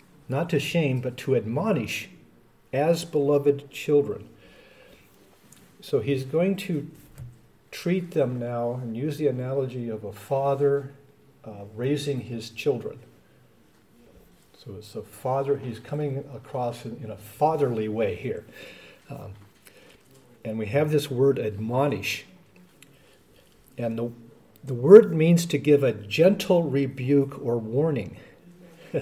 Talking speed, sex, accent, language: 120 wpm, male, American, English